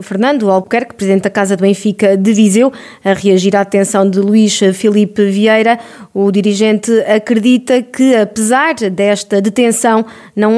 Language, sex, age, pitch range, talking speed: Portuguese, female, 20-39, 220-260 Hz, 140 wpm